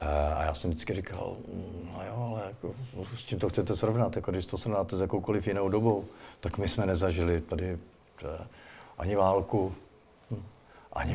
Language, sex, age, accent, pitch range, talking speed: Czech, male, 50-69, native, 85-105 Hz, 160 wpm